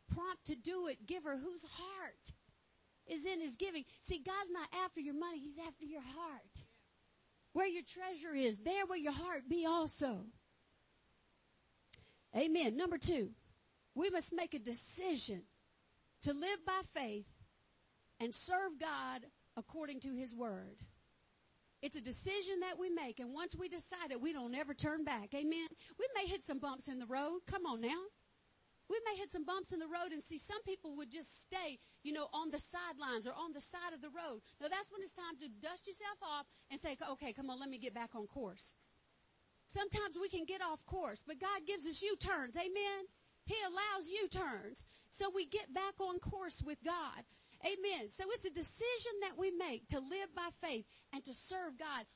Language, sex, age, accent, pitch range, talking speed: English, female, 50-69, American, 290-375 Hz, 190 wpm